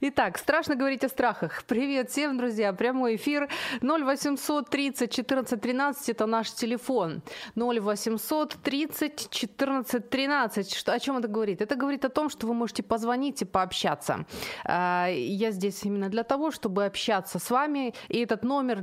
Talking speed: 135 wpm